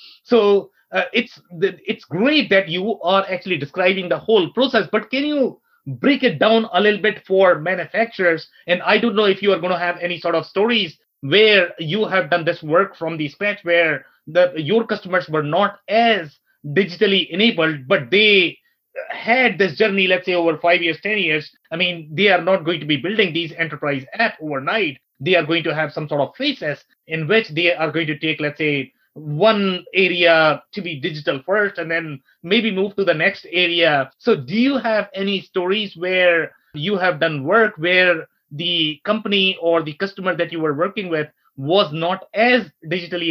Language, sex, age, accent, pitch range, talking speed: English, male, 30-49, Indian, 160-200 Hz, 195 wpm